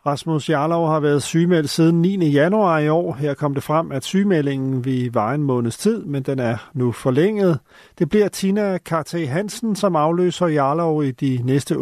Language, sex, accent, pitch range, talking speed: Danish, male, native, 140-185 Hz, 190 wpm